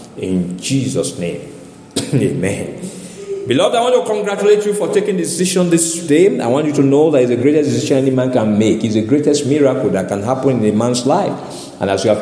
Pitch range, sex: 125-160 Hz, male